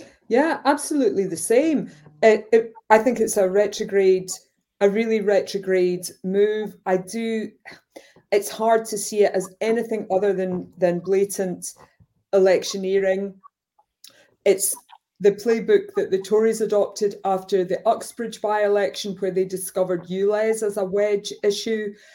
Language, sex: English, female